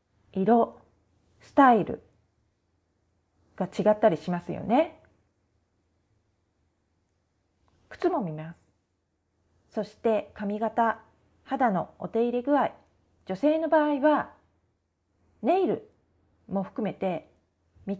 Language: Japanese